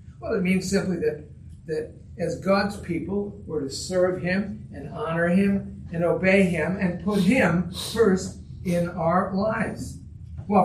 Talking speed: 150 wpm